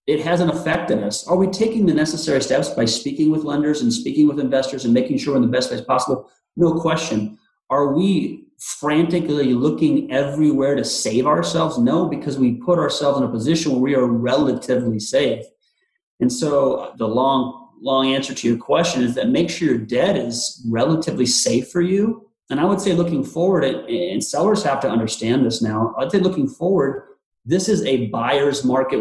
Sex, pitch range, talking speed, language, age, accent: male, 125-165 Hz, 190 wpm, English, 30-49, American